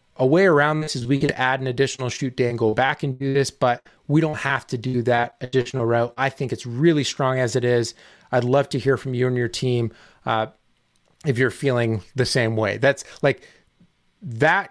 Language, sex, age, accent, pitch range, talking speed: English, male, 30-49, American, 120-140 Hz, 220 wpm